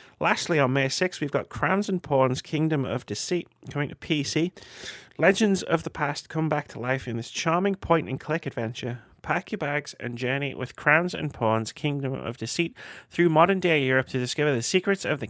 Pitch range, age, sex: 115-150 Hz, 30-49, male